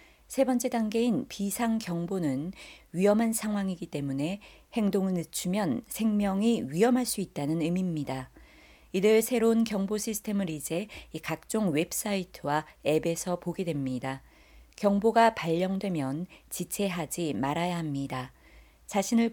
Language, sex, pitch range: Korean, female, 160-220 Hz